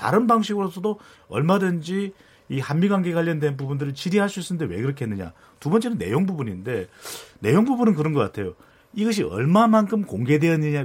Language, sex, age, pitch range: Korean, male, 40-59, 135-195 Hz